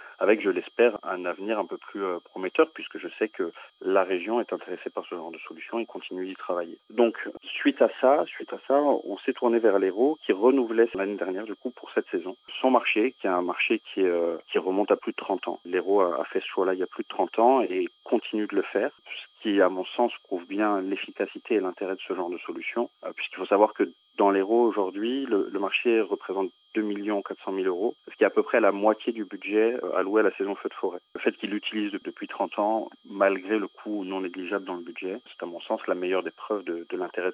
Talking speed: 245 wpm